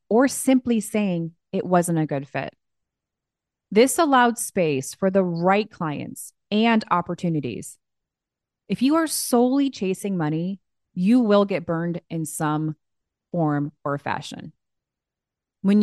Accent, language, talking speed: American, English, 125 wpm